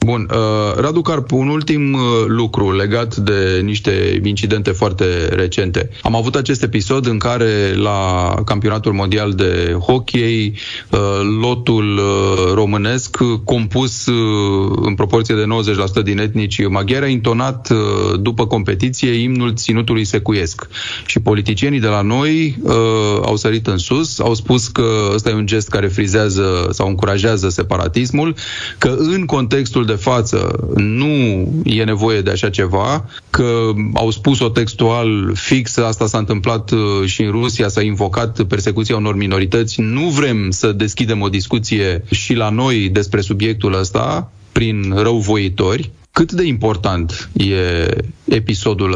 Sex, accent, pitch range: male, native, 100-120 Hz